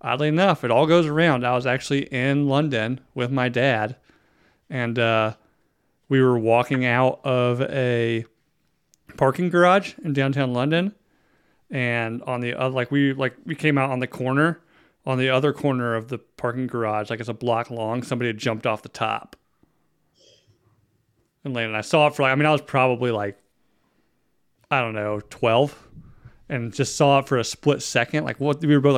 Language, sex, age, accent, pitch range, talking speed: English, male, 30-49, American, 115-145 Hz, 185 wpm